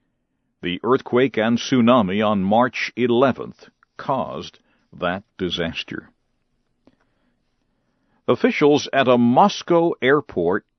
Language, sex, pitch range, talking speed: English, male, 120-170 Hz, 85 wpm